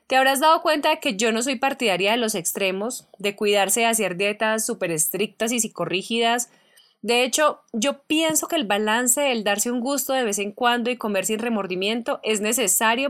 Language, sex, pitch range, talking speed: Spanish, female, 195-270 Hz, 195 wpm